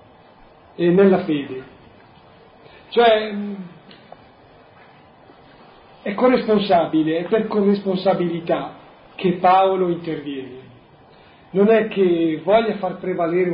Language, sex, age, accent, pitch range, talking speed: Italian, male, 40-59, native, 160-195 Hz, 80 wpm